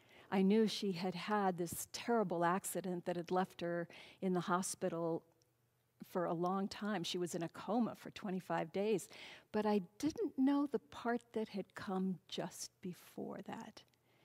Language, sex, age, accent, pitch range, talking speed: English, female, 50-69, American, 175-225 Hz, 165 wpm